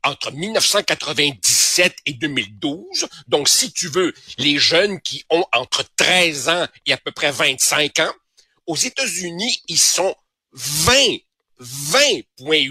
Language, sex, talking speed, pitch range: French, male, 125 wpm, 145-215 Hz